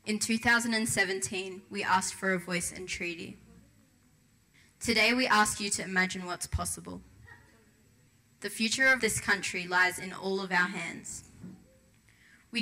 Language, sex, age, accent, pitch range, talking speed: English, female, 20-39, Australian, 175-210 Hz, 140 wpm